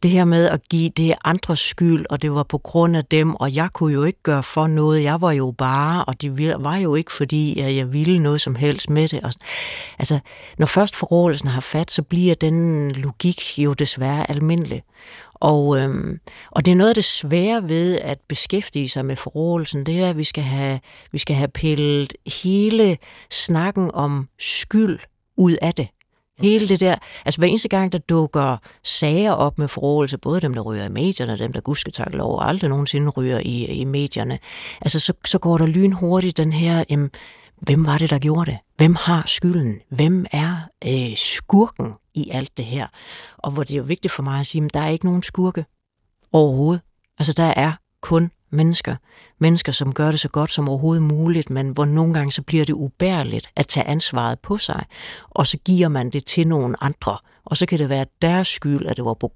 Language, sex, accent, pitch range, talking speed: Danish, female, native, 140-170 Hz, 205 wpm